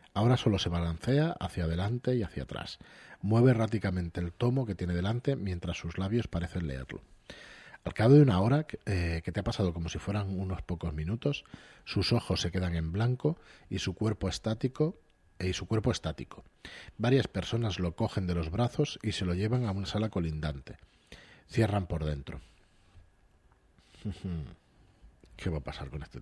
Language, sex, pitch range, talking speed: Spanish, male, 85-115 Hz, 175 wpm